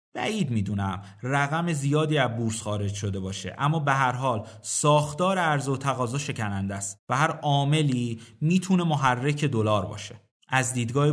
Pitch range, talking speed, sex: 120-155 Hz, 150 wpm, male